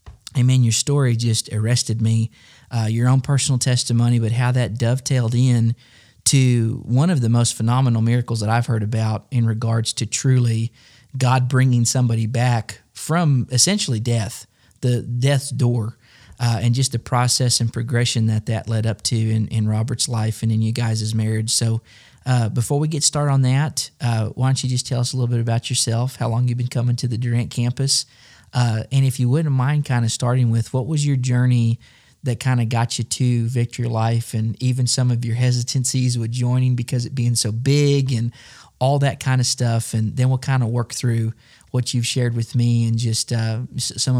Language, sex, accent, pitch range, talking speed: English, male, American, 115-130 Hz, 200 wpm